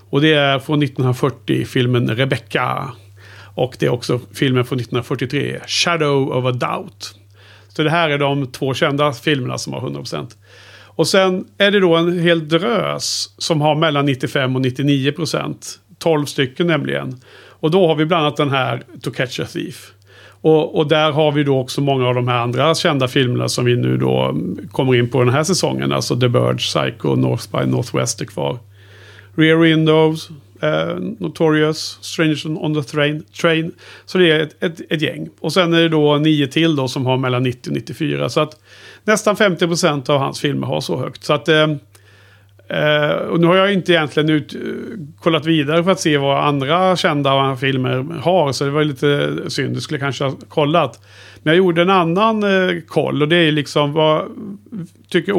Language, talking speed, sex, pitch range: Swedish, 195 wpm, male, 125-165 Hz